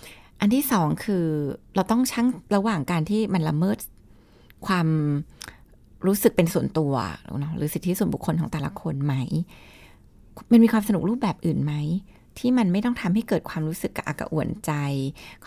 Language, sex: Thai, female